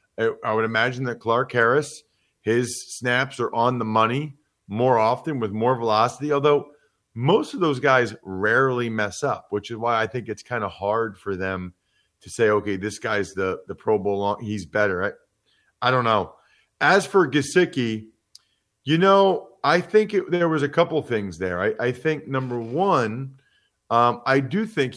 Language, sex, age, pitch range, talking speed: English, male, 30-49, 110-155 Hz, 180 wpm